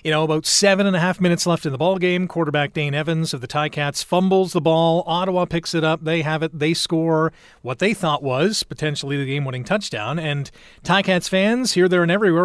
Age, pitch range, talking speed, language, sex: 40-59, 155-185 Hz, 220 wpm, English, male